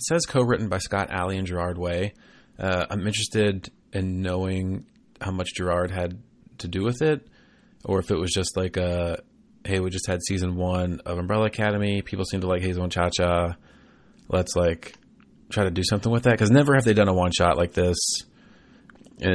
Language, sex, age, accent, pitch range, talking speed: English, male, 30-49, American, 90-110 Hz, 195 wpm